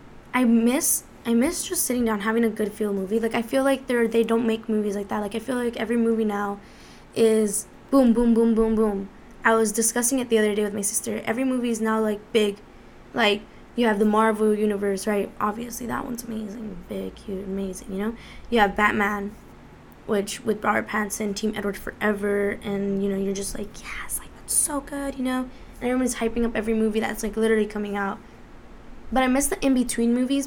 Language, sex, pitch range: English, female, 210-260 Hz